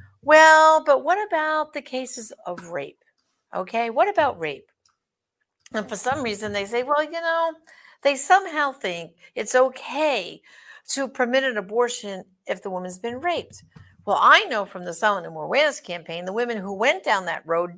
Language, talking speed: English, 180 wpm